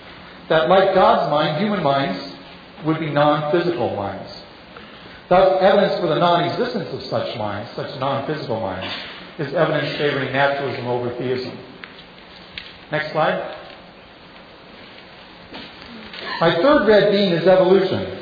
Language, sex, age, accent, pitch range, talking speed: English, male, 40-59, American, 140-195 Hz, 115 wpm